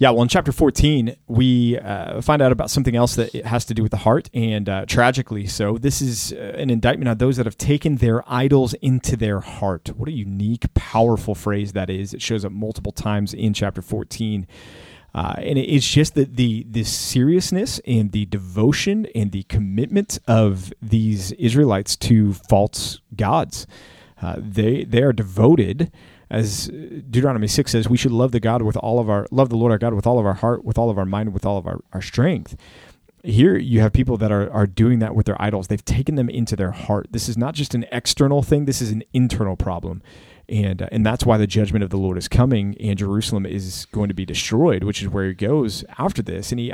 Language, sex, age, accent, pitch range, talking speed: English, male, 30-49, American, 100-125 Hz, 220 wpm